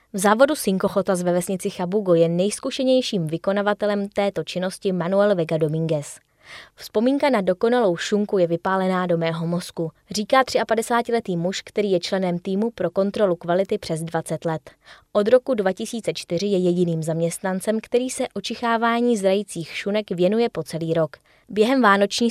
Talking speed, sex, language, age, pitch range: 145 wpm, female, Czech, 20-39, 175-215 Hz